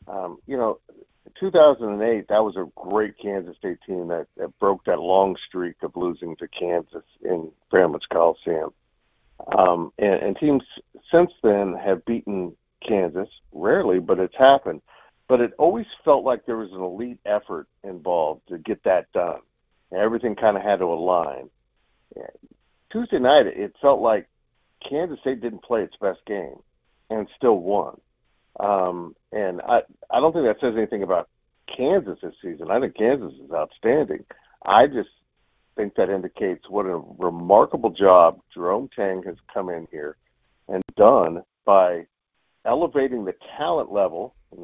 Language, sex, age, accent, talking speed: English, male, 50-69, American, 155 wpm